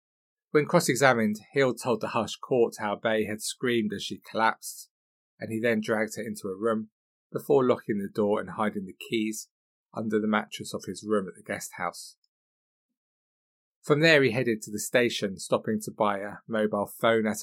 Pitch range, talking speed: 105-135 Hz, 185 wpm